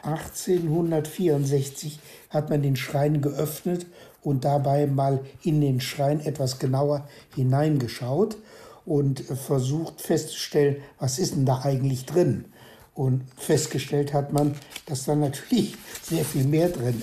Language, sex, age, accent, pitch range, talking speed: German, male, 60-79, German, 135-165 Hz, 125 wpm